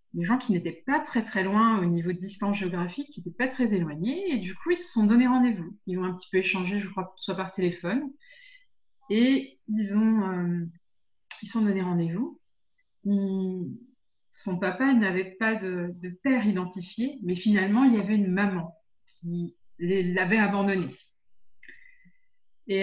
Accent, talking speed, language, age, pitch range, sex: French, 170 wpm, French, 30-49, 180-235 Hz, female